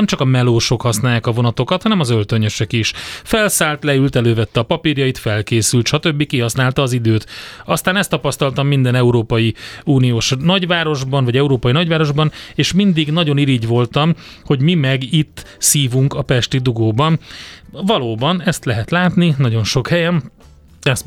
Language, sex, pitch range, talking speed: Hungarian, male, 115-150 Hz, 145 wpm